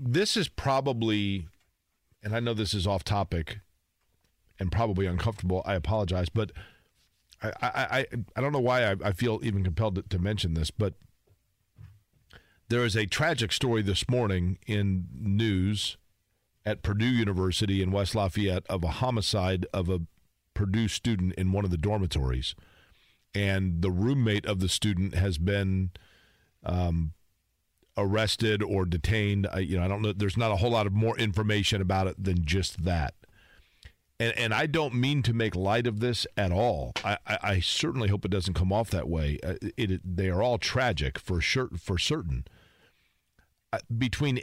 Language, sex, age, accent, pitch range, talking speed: English, male, 40-59, American, 90-115 Hz, 170 wpm